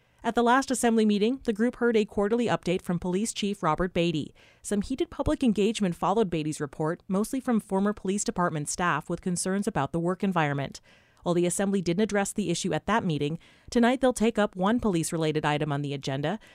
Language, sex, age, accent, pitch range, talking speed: English, female, 30-49, American, 165-210 Hz, 200 wpm